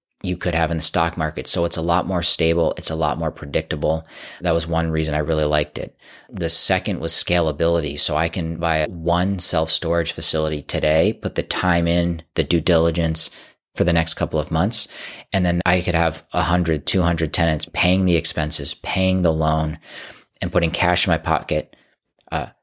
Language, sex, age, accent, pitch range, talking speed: English, male, 30-49, American, 80-90 Hz, 195 wpm